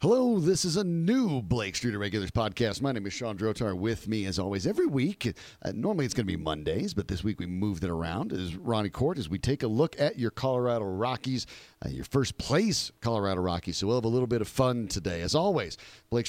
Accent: American